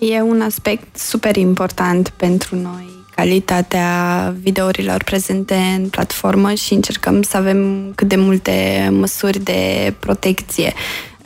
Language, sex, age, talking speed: Romanian, female, 20-39, 115 wpm